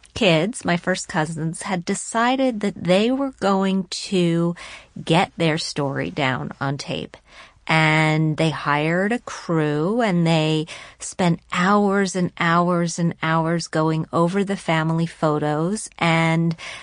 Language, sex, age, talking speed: English, female, 40-59, 130 wpm